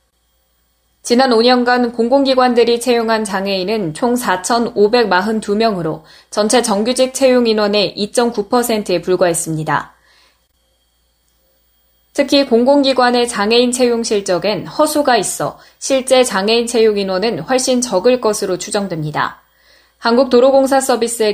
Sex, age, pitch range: female, 10-29, 185-245 Hz